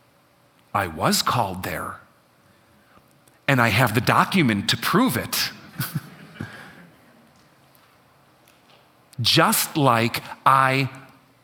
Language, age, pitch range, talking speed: English, 40-59, 130-185 Hz, 80 wpm